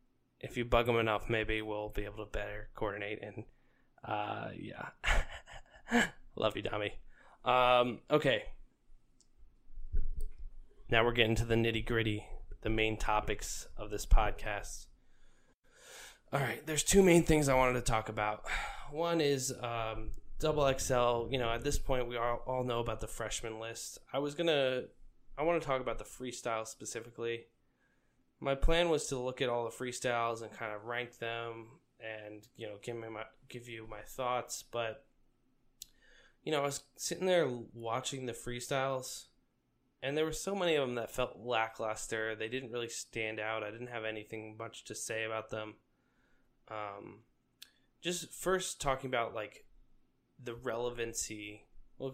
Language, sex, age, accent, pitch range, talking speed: English, male, 10-29, American, 110-130 Hz, 160 wpm